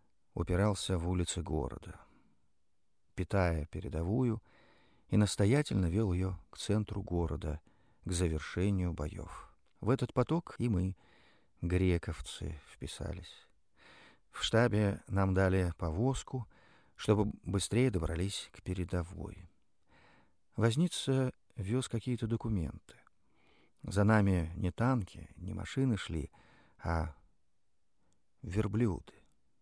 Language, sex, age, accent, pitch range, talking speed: Russian, male, 50-69, native, 85-110 Hz, 95 wpm